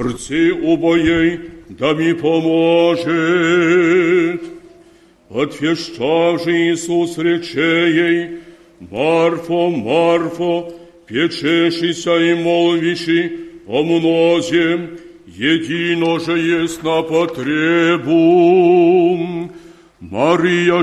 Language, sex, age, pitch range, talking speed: Polish, male, 60-79, 170-175 Hz, 60 wpm